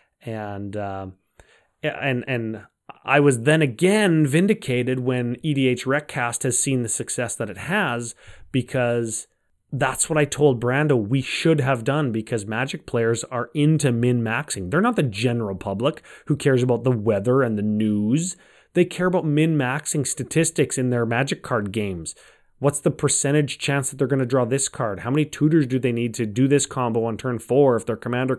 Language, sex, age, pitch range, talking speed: English, male, 30-49, 110-140 Hz, 180 wpm